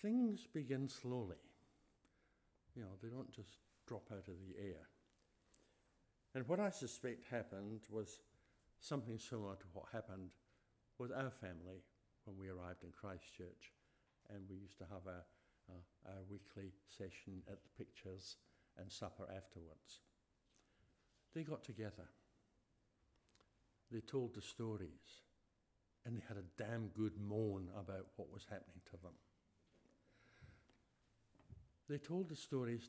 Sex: male